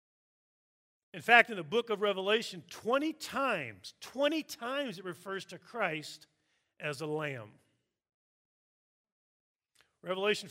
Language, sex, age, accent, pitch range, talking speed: English, male, 50-69, American, 165-215 Hz, 110 wpm